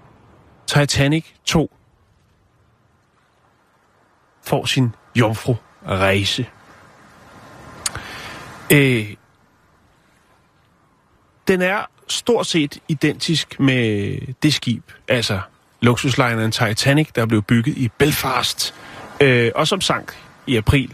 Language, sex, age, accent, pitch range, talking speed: Danish, male, 30-49, native, 110-145 Hz, 80 wpm